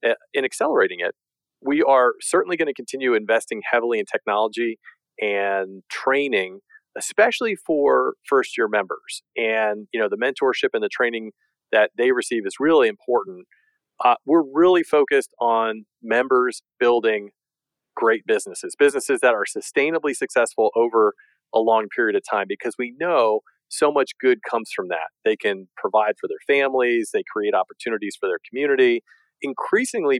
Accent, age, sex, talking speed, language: American, 40-59, male, 150 wpm, English